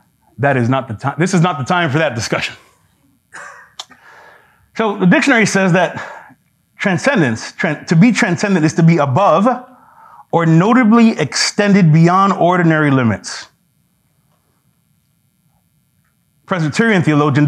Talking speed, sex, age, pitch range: 120 wpm, male, 30-49, 150-205 Hz